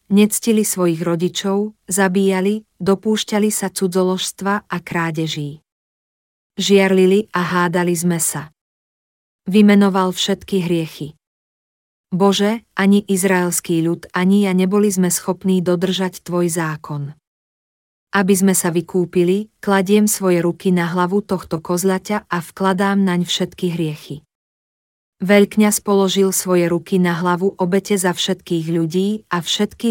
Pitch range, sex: 175-195 Hz, female